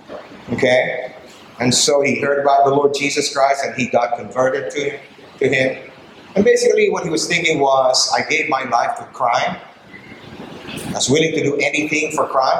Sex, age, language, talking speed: male, 50-69, English, 180 wpm